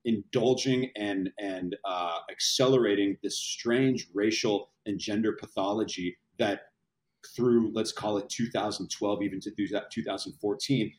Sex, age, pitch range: male, 40-59, 100-135 Hz